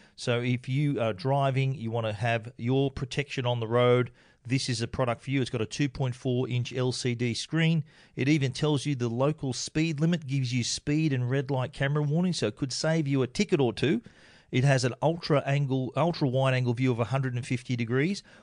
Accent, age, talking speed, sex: Australian, 40-59, 200 wpm, male